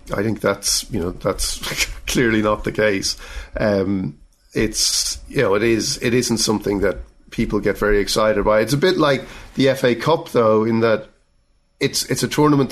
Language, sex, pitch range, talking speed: English, male, 105-120 Hz, 185 wpm